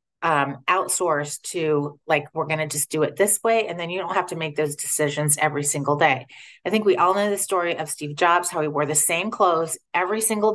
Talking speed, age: 240 wpm, 30-49